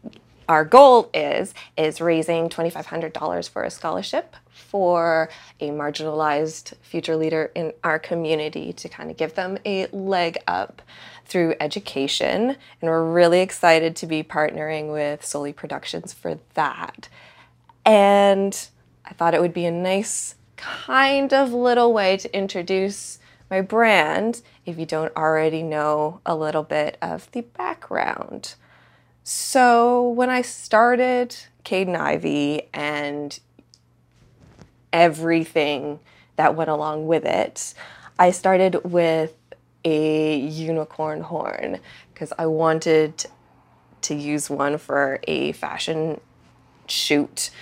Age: 20-39